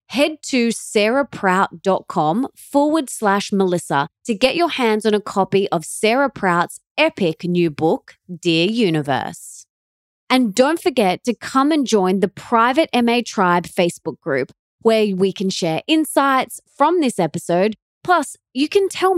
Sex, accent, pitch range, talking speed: female, Australian, 185-275 Hz, 145 wpm